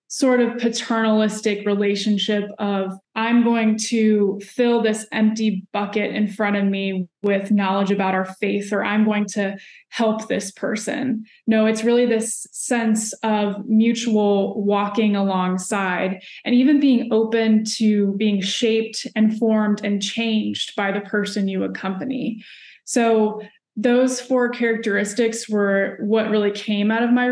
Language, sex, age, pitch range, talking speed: English, female, 20-39, 200-230 Hz, 140 wpm